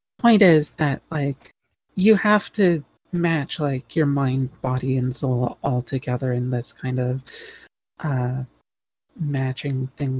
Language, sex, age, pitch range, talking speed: English, female, 30-49, 130-150 Hz, 135 wpm